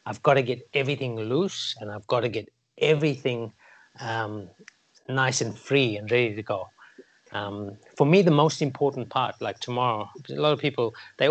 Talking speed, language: 180 wpm, English